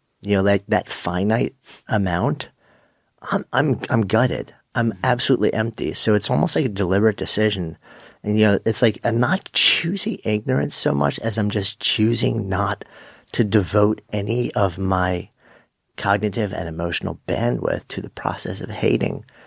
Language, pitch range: English, 95-120 Hz